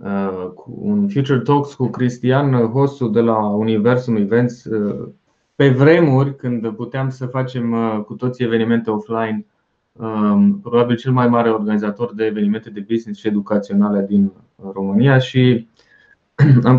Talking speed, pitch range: 125 wpm, 110-130 Hz